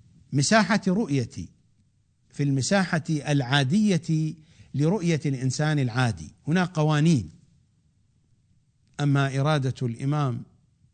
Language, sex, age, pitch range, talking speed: English, male, 60-79, 120-175 Hz, 70 wpm